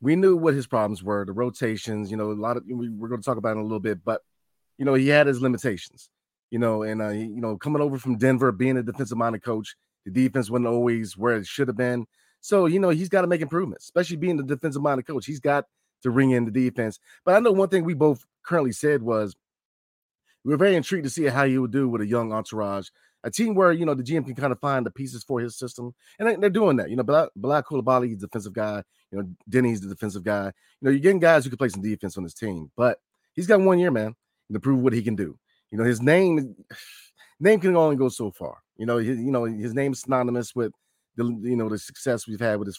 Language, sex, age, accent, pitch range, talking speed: English, male, 30-49, American, 110-140 Hz, 260 wpm